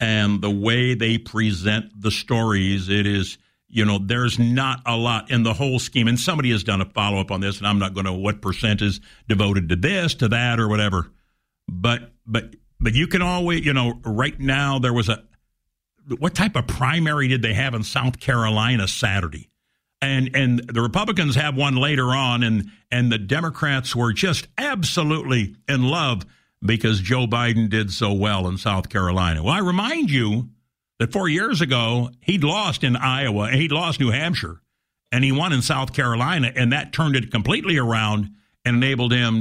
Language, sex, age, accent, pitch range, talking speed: English, male, 60-79, American, 110-135 Hz, 190 wpm